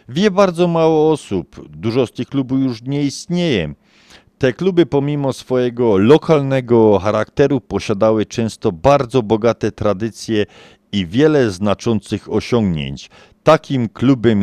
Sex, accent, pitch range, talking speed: male, native, 95-130 Hz, 115 wpm